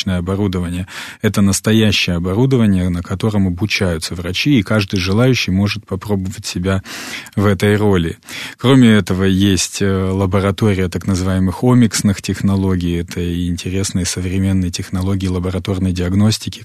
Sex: male